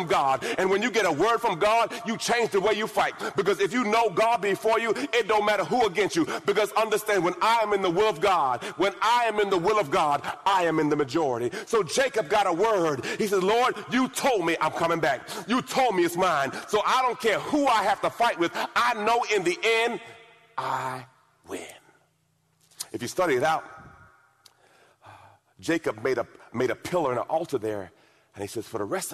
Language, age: English, 40-59